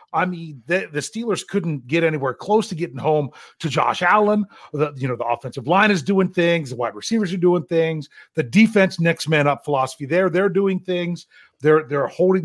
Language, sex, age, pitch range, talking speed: English, male, 40-59, 155-205 Hz, 205 wpm